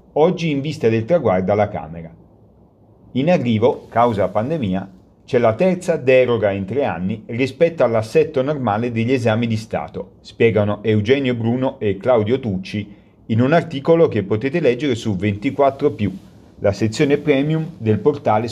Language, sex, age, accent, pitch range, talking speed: Italian, male, 40-59, native, 100-130 Hz, 145 wpm